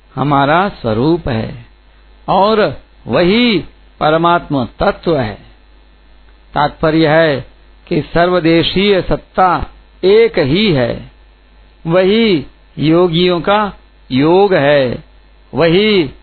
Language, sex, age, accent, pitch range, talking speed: Hindi, male, 60-79, native, 130-185 Hz, 80 wpm